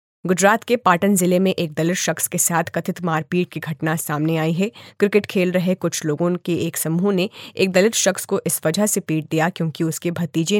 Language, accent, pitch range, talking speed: Hindi, native, 160-190 Hz, 215 wpm